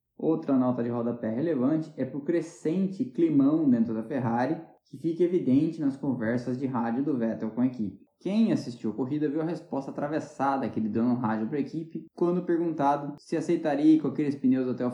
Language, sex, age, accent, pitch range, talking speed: Portuguese, male, 10-29, Brazilian, 130-200 Hz, 200 wpm